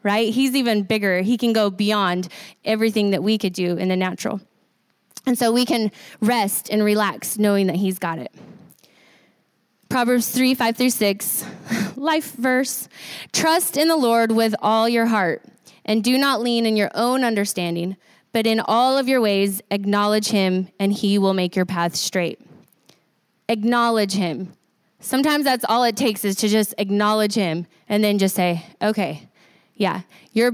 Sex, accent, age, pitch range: female, American, 20-39, 195-235 Hz